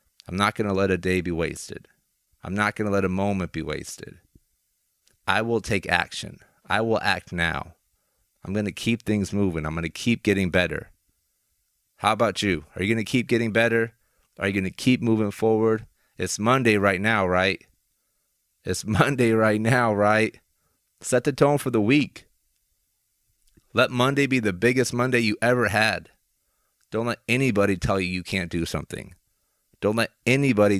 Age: 30-49